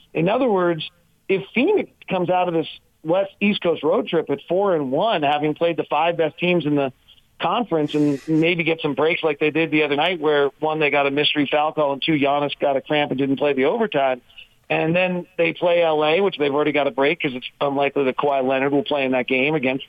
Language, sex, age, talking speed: English, male, 40-59, 240 wpm